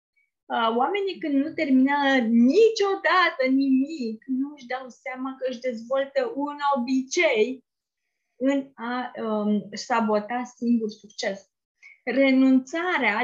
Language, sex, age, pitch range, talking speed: Romanian, female, 20-39, 230-295 Hz, 100 wpm